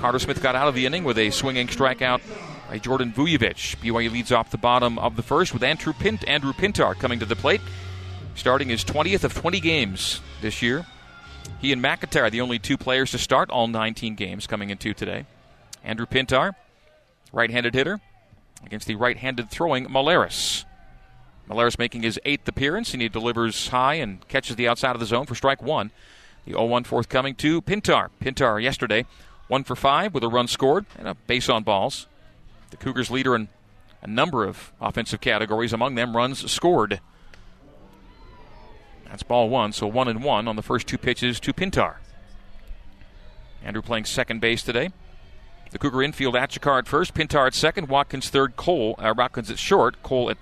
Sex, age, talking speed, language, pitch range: male, 40-59, 180 wpm, English, 110-130 Hz